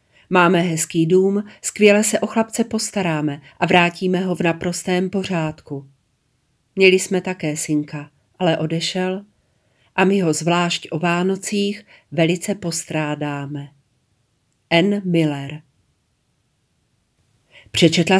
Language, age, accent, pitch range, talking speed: Czech, 40-59, native, 150-180 Hz, 100 wpm